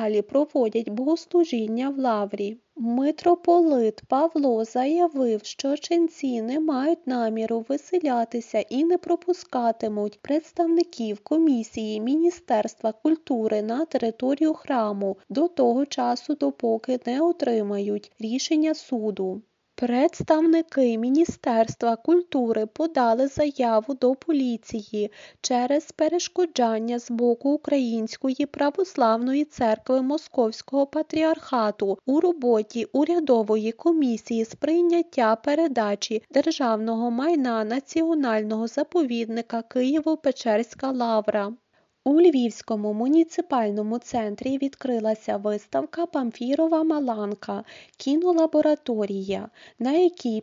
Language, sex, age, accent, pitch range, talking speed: Ukrainian, female, 20-39, native, 225-315 Hz, 85 wpm